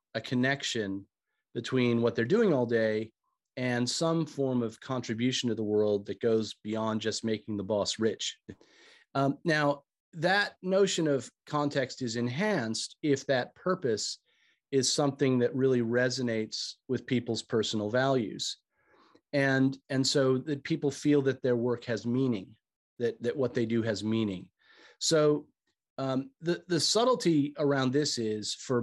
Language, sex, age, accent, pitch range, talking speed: English, male, 40-59, American, 115-140 Hz, 150 wpm